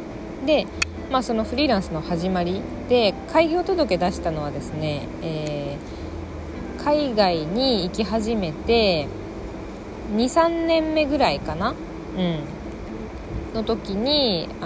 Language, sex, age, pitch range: Japanese, female, 20-39, 165-265 Hz